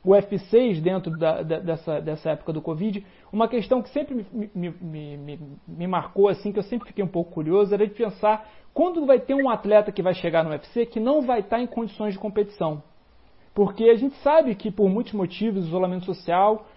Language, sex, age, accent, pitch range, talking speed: Portuguese, male, 40-59, Brazilian, 170-230 Hz, 210 wpm